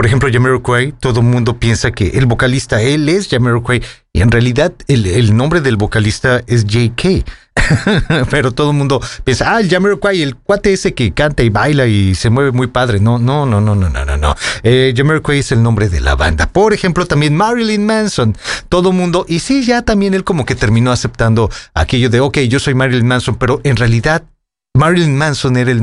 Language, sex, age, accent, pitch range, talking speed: English, male, 40-59, Mexican, 120-175 Hz, 210 wpm